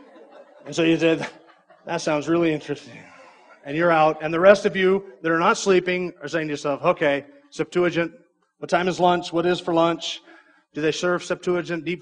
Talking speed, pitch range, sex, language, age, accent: 195 wpm, 145-175 Hz, male, English, 30-49, American